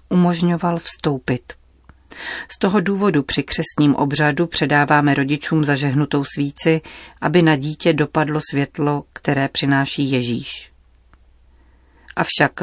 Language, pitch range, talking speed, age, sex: Czech, 135-165 Hz, 100 wpm, 40-59, female